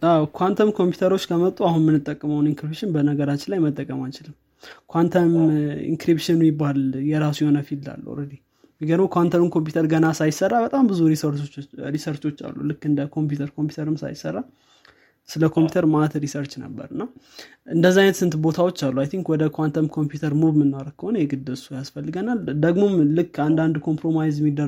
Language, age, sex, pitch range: Amharic, 20-39, male, 145-165 Hz